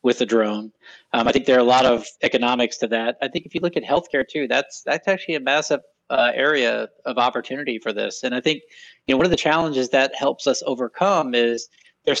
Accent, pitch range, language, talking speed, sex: American, 115-135 Hz, English, 235 wpm, male